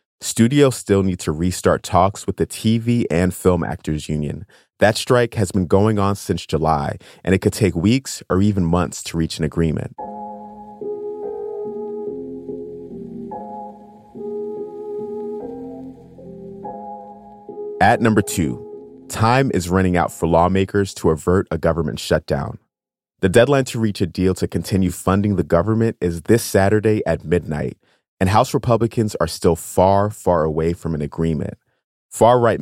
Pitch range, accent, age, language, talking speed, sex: 85-115 Hz, American, 30-49, English, 140 wpm, male